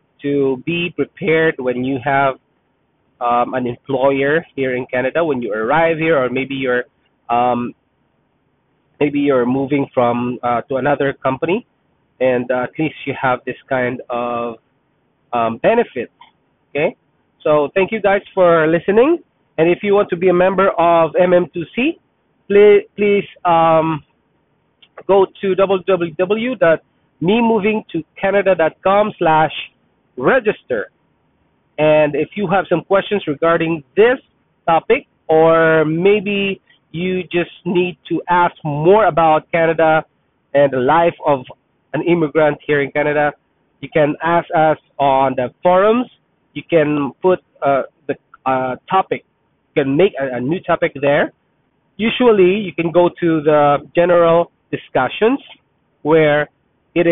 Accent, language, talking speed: Filipino, English, 130 wpm